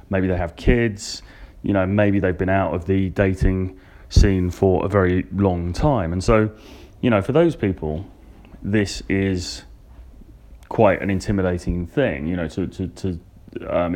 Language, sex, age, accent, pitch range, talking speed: English, male, 30-49, British, 85-100 Hz, 165 wpm